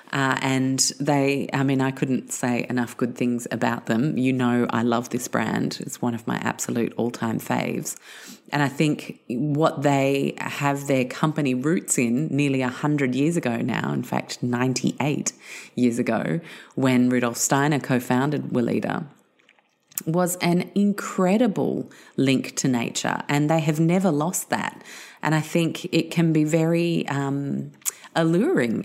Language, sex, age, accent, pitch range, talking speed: English, female, 30-49, Australian, 125-160 Hz, 150 wpm